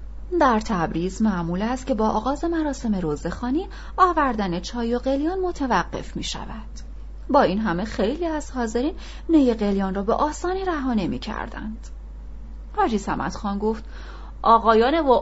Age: 30-49